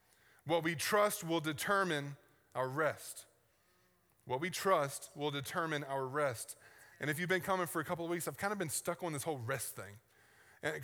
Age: 20-39